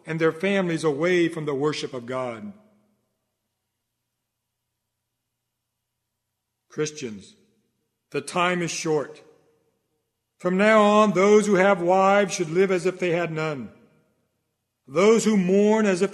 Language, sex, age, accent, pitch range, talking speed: English, male, 50-69, American, 125-190 Hz, 125 wpm